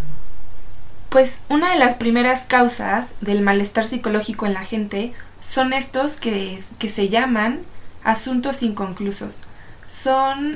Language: Spanish